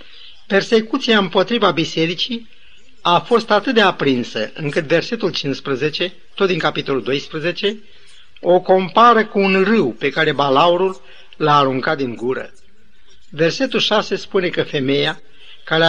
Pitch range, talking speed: 155-200 Hz, 125 wpm